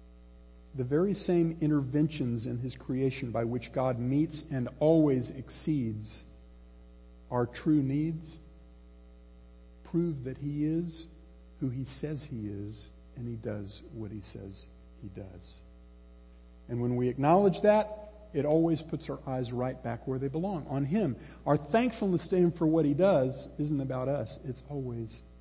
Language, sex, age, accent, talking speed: English, male, 50-69, American, 150 wpm